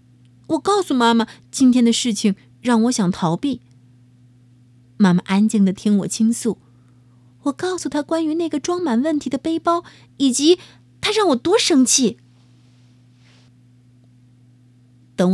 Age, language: 30-49, Chinese